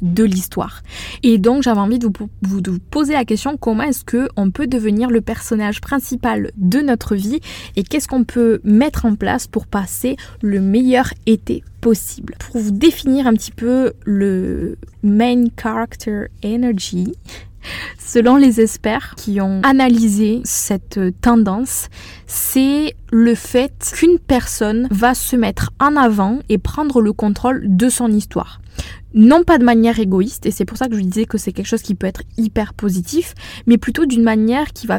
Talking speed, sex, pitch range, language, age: 170 wpm, female, 195-240 Hz, French, 20-39